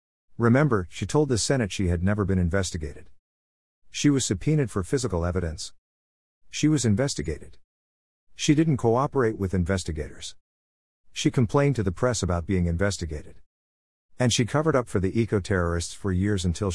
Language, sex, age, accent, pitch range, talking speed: English, male, 50-69, American, 85-115 Hz, 150 wpm